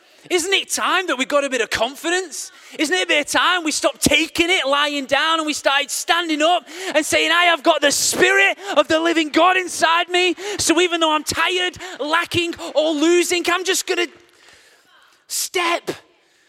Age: 20-39